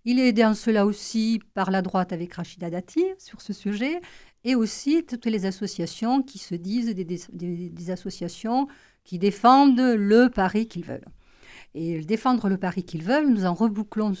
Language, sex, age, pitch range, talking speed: French, female, 50-69, 175-225 Hz, 175 wpm